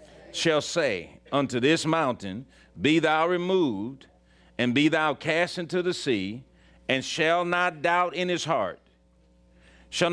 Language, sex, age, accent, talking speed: English, male, 50-69, American, 135 wpm